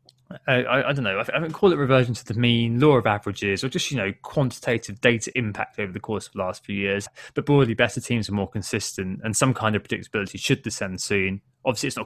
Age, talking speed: 20-39, 250 wpm